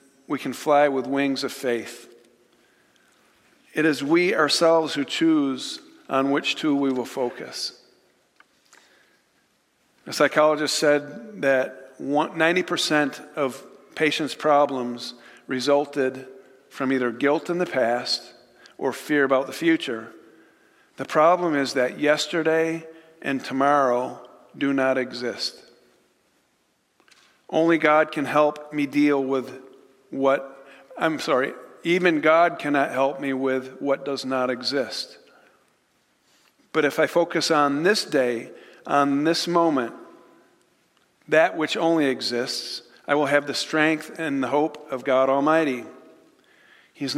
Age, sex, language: 50-69, male, English